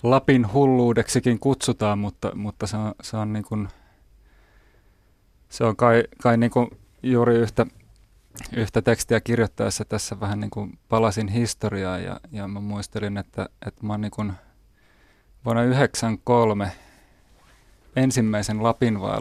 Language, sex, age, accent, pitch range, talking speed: Finnish, male, 30-49, native, 105-120 Hz, 130 wpm